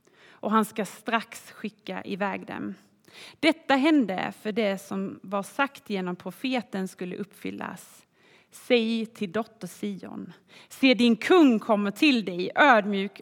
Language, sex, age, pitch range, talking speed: Swedish, female, 30-49, 200-240 Hz, 130 wpm